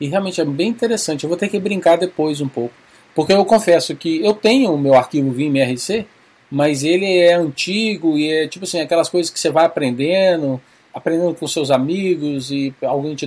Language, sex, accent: Portuguese, male, Brazilian